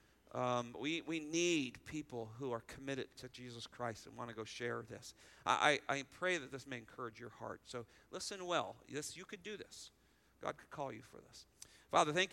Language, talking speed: English, 210 wpm